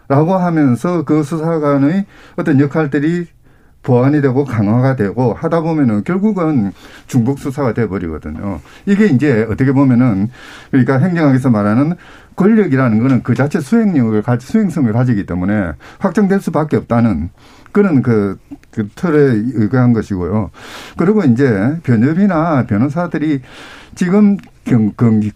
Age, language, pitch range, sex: 50-69, Korean, 115-175 Hz, male